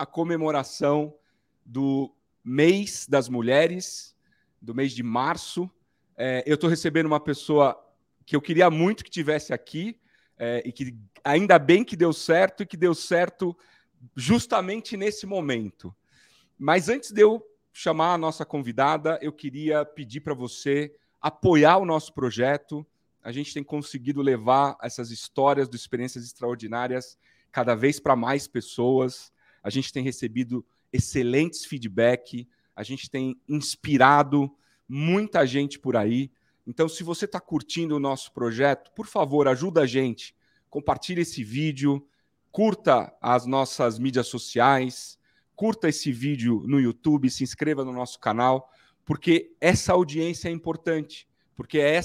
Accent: Brazilian